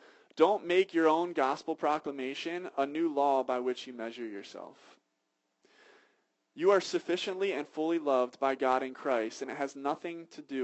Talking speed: 170 wpm